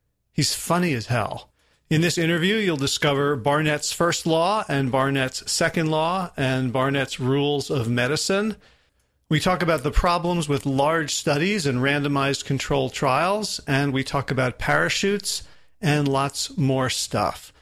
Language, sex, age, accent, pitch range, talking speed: English, male, 40-59, American, 135-175 Hz, 145 wpm